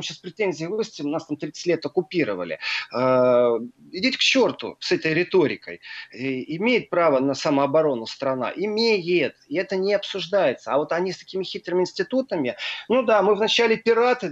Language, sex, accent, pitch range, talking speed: Russian, male, native, 145-190 Hz, 160 wpm